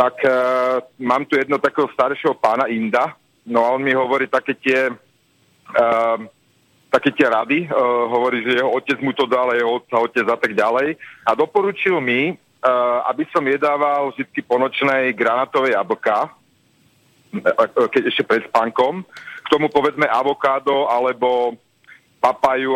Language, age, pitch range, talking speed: Slovak, 40-59, 120-145 Hz, 145 wpm